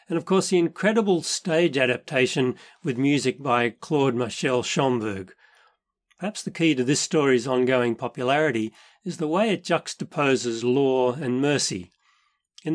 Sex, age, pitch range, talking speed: male, 40-59, 125-175 Hz, 135 wpm